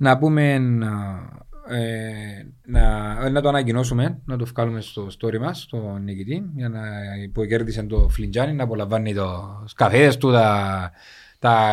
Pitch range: 115-145 Hz